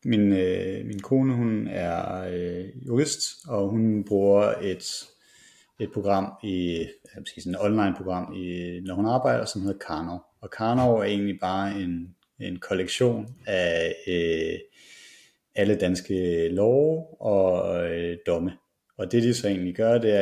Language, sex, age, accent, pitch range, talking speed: Danish, male, 30-49, native, 95-115 Hz, 140 wpm